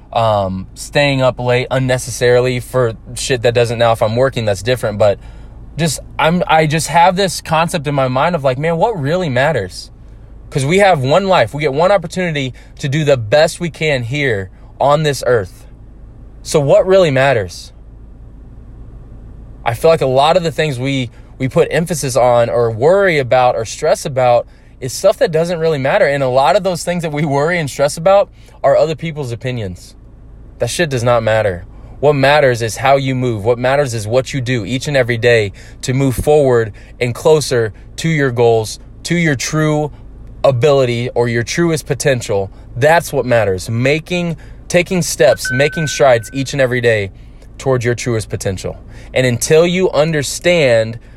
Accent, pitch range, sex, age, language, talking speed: American, 120-150 Hz, male, 20-39, English, 180 wpm